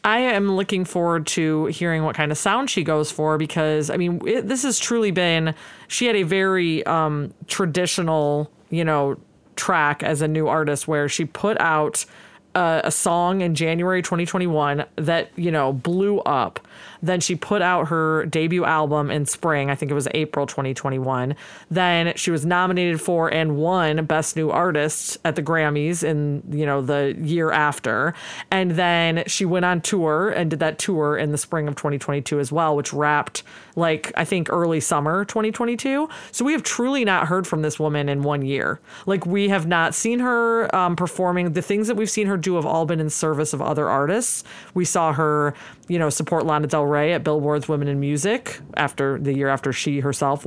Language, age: English, 30-49